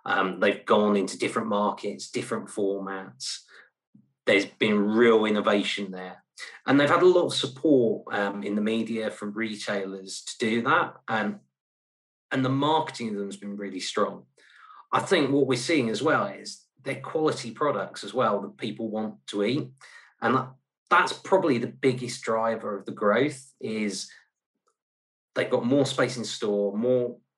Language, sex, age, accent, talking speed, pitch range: English, male, 30-49, British, 165 wpm, 100-130 Hz